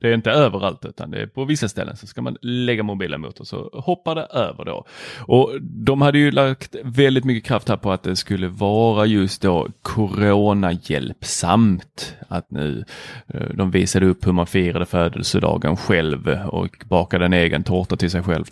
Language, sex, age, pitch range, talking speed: Swedish, male, 30-49, 95-115 Hz, 185 wpm